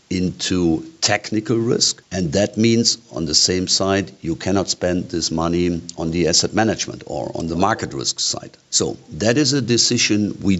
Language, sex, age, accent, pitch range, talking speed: English, male, 50-69, German, 85-110 Hz, 175 wpm